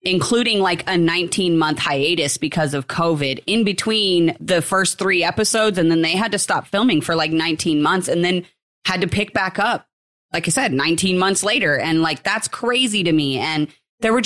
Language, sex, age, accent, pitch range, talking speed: English, female, 30-49, American, 160-200 Hz, 200 wpm